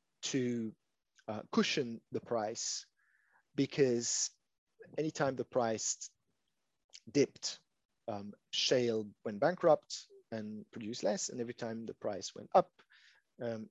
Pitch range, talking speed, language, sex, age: 110-145 Hz, 110 wpm, English, male, 30-49